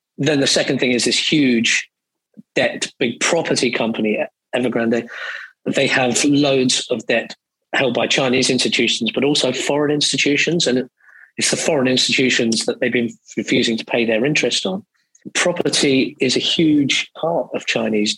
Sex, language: male, English